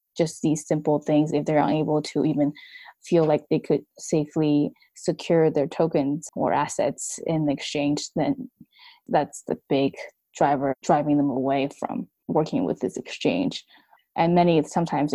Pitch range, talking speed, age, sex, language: 145-165 Hz, 150 wpm, 10-29, female, English